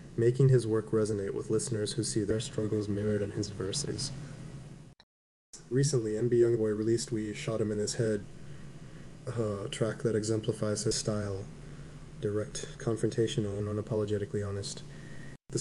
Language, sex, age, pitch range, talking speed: English, male, 20-39, 105-140 Hz, 140 wpm